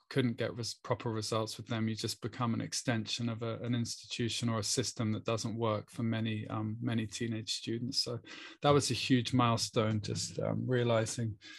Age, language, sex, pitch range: 20-39, English, male, 115-130 Hz